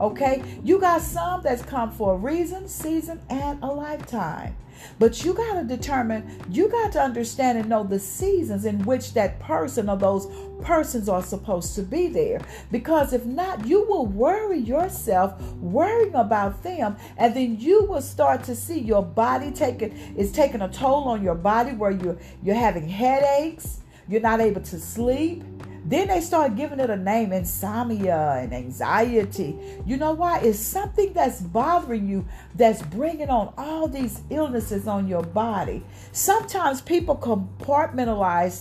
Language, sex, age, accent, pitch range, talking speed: English, female, 50-69, American, 210-320 Hz, 165 wpm